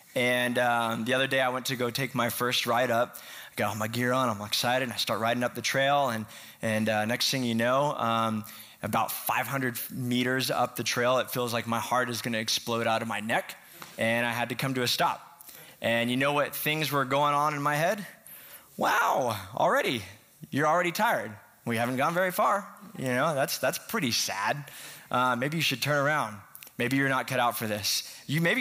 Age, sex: 20-39, male